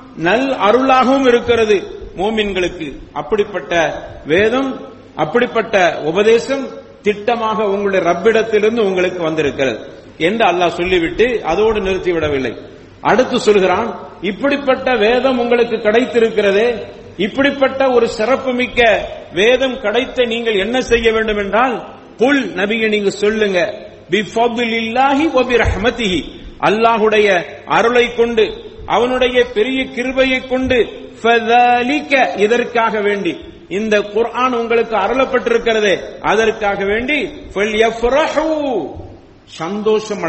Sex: male